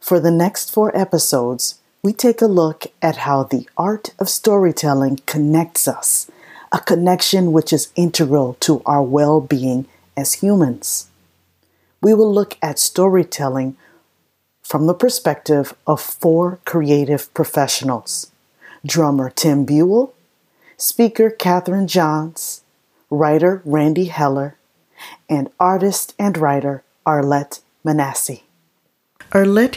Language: English